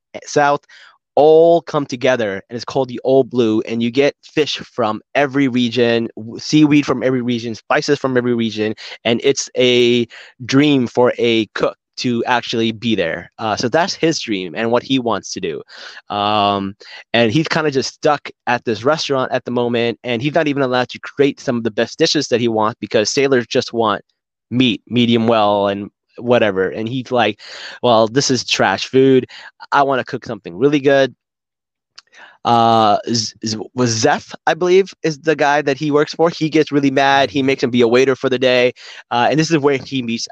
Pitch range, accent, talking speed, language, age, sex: 115-140 Hz, American, 200 wpm, English, 20-39, male